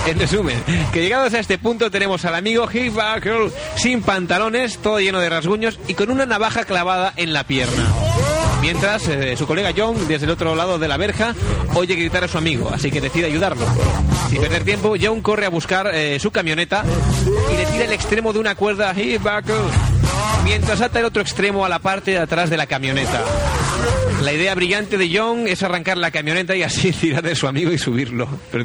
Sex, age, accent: male, 30-49, Spanish